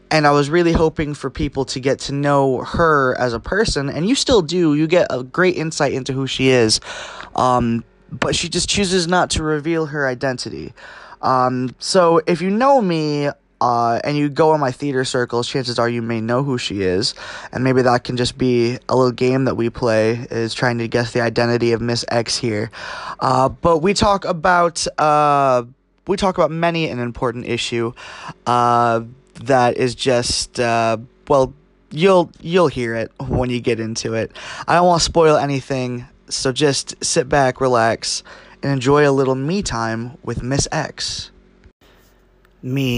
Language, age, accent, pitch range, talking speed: English, 20-39, American, 120-165 Hz, 185 wpm